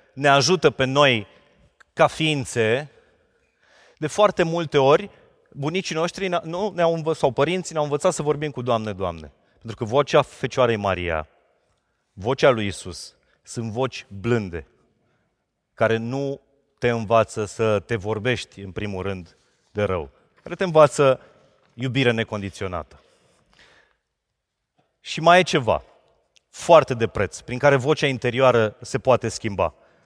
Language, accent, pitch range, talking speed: Romanian, native, 120-165 Hz, 130 wpm